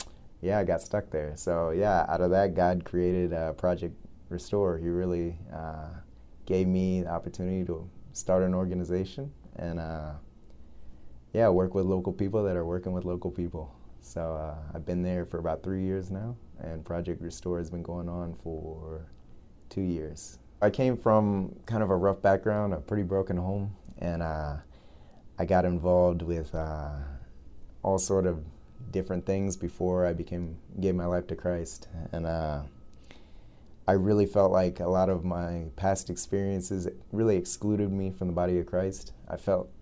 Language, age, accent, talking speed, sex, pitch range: English, 20-39, American, 170 wpm, male, 80-95 Hz